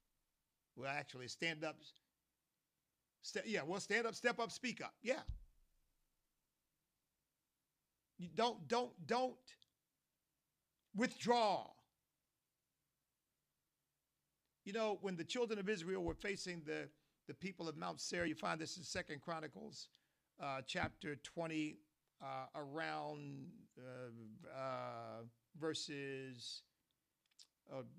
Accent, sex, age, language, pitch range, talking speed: American, male, 50-69, English, 125-160 Hz, 105 wpm